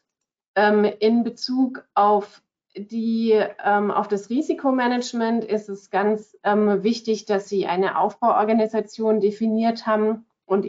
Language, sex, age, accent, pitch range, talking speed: German, female, 30-49, German, 195-220 Hz, 95 wpm